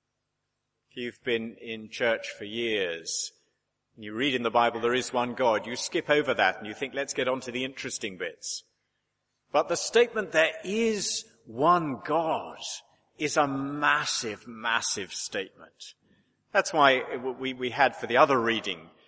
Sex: male